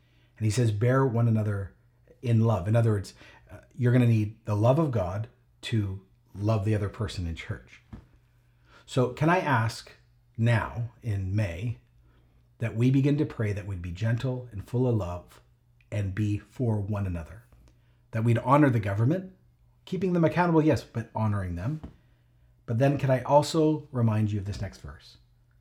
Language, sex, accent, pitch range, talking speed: English, male, American, 105-125 Hz, 175 wpm